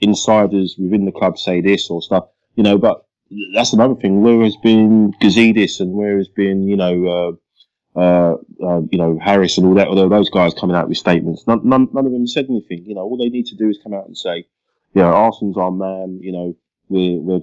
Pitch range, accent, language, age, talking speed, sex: 95-110 Hz, British, English, 20-39, 230 wpm, male